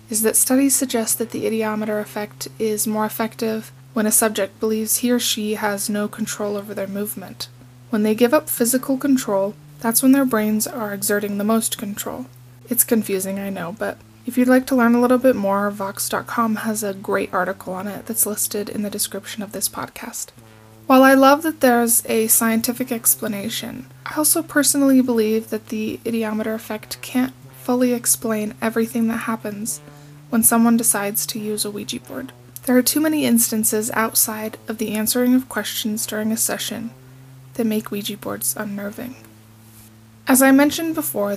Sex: female